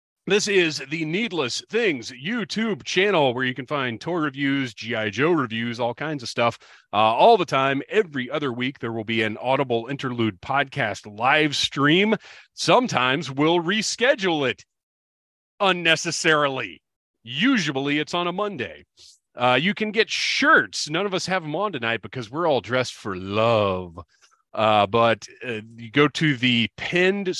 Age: 40-59